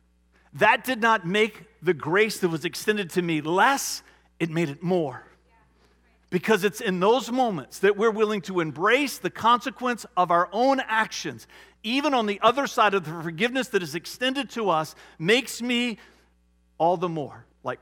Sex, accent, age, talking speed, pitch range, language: male, American, 40-59, 170 wpm, 145-220 Hz, English